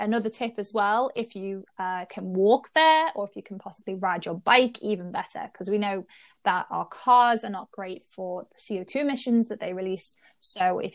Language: English